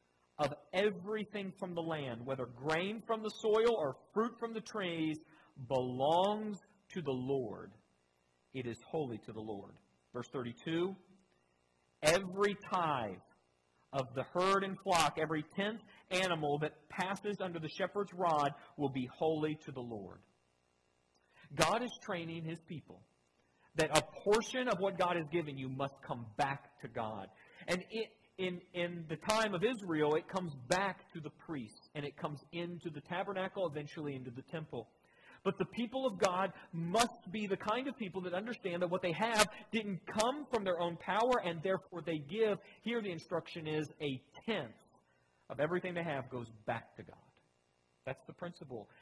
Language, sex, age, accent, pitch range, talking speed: English, male, 40-59, American, 130-190 Hz, 165 wpm